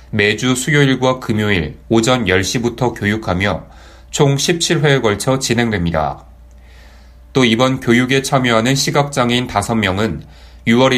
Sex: male